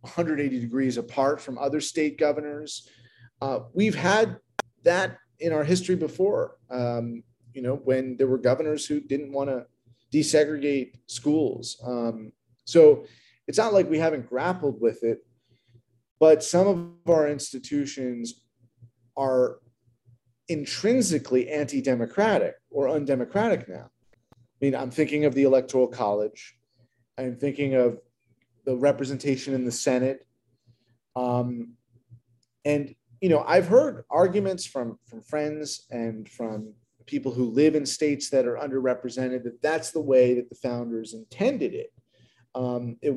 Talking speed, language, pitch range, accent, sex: 135 wpm, English, 120-150 Hz, American, male